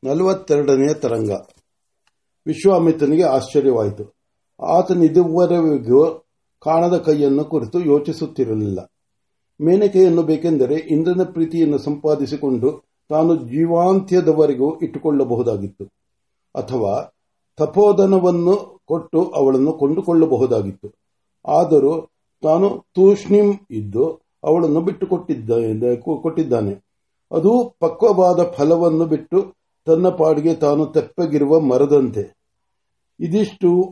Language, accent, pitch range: Marathi, native, 135-180 Hz